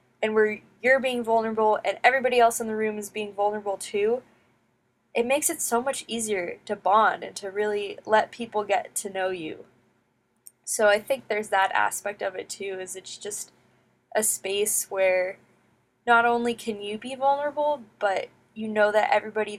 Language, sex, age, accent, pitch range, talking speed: English, female, 10-29, American, 195-240 Hz, 180 wpm